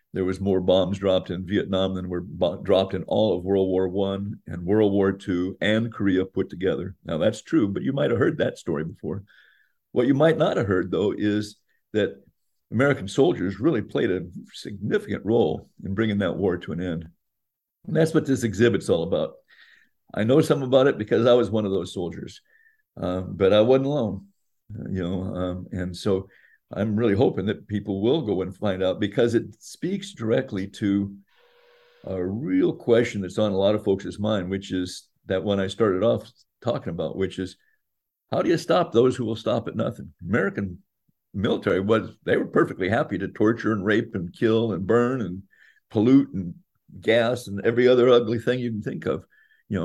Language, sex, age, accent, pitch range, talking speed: English, male, 50-69, American, 95-120 Hz, 195 wpm